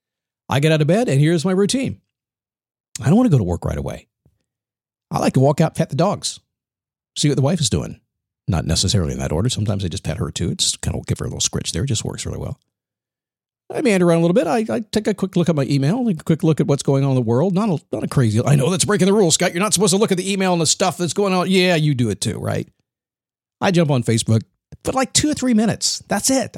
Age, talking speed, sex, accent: 50-69, 280 wpm, male, American